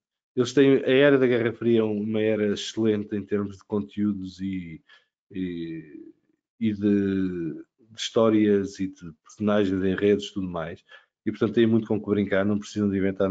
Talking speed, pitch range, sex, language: 180 wpm, 100-120 Hz, male, English